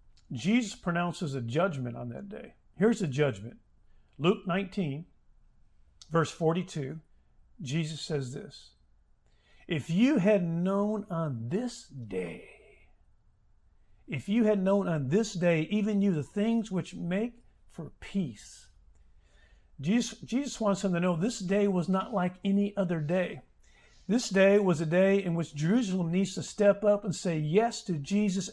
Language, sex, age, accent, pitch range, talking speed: English, male, 50-69, American, 140-200 Hz, 145 wpm